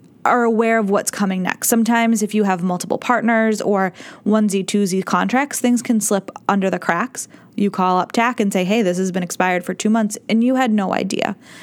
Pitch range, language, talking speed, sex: 190-220 Hz, English, 210 wpm, female